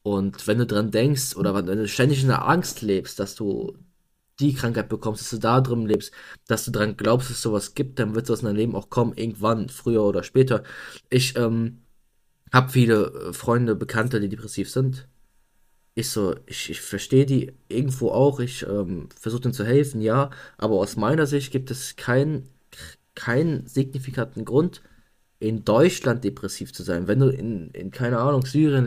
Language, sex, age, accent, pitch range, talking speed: German, male, 20-39, German, 105-130 Hz, 185 wpm